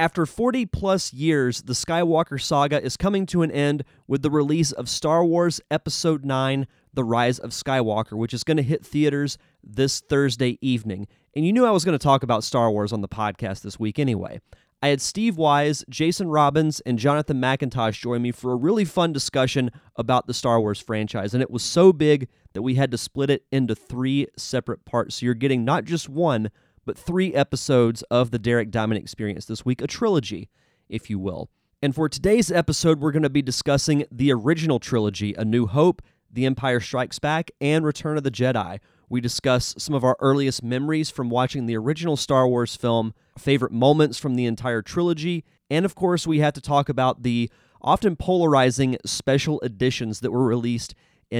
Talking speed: 195 wpm